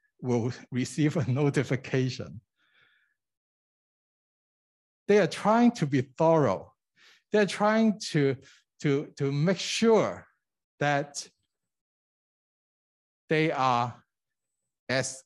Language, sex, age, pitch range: Chinese, male, 60-79, 120-155 Hz